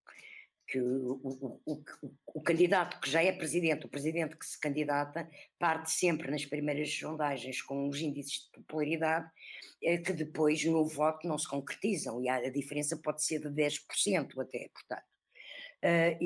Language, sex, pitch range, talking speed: Portuguese, female, 150-185 Hz, 160 wpm